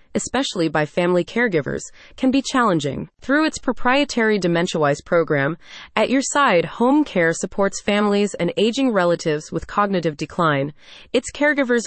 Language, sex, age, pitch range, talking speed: English, female, 30-49, 170-235 Hz, 135 wpm